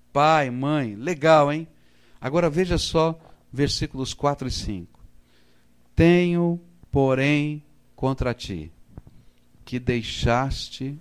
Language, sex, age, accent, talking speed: Portuguese, male, 60-79, Brazilian, 95 wpm